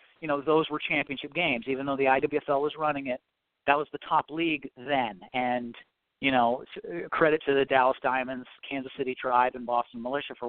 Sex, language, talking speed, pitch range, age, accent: male, English, 195 wpm, 125-155 Hz, 40-59, American